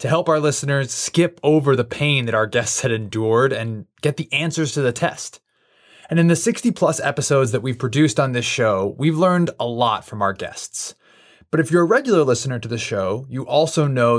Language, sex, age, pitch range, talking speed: English, male, 20-39, 115-160 Hz, 215 wpm